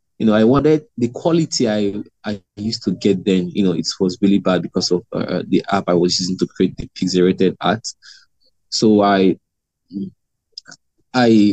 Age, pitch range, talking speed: 20-39, 95-110 Hz, 175 wpm